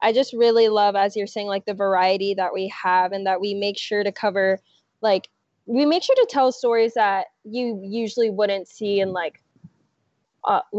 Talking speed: 195 wpm